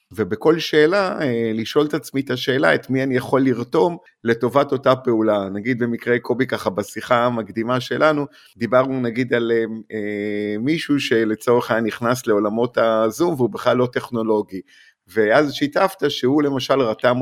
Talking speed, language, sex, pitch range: 145 wpm, Hebrew, male, 110-135 Hz